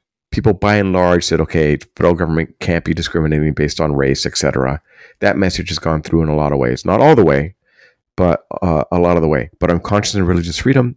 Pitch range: 75-95 Hz